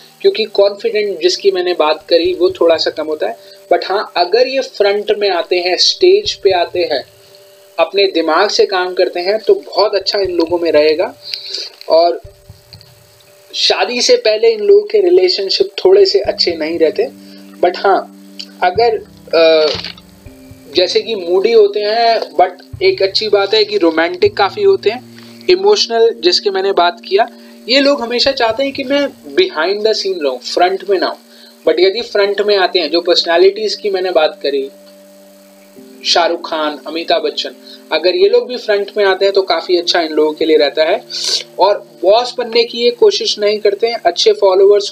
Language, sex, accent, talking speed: Hindi, male, native, 175 wpm